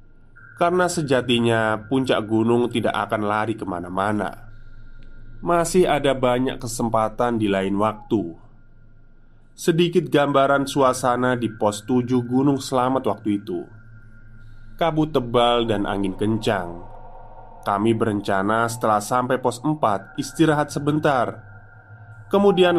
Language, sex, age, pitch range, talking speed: Indonesian, male, 20-39, 105-130 Hz, 105 wpm